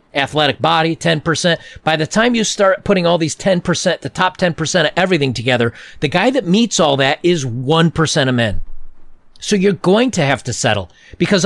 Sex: male